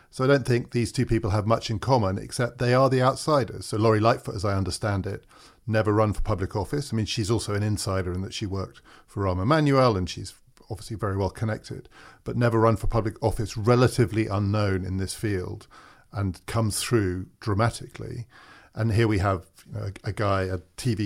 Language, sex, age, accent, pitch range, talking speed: English, male, 40-59, British, 100-120 Hz, 200 wpm